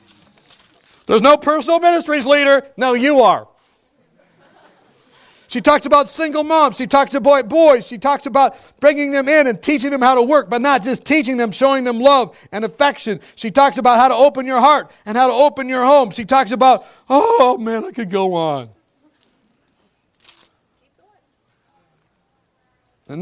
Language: English